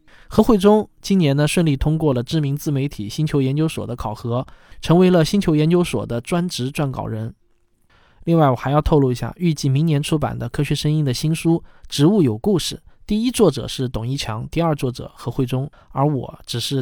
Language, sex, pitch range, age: Chinese, male, 130-165 Hz, 20-39